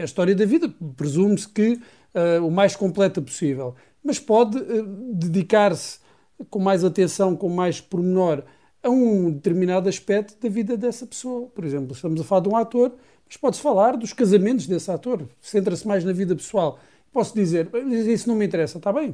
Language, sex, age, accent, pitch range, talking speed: Portuguese, male, 50-69, Portuguese, 175-210 Hz, 180 wpm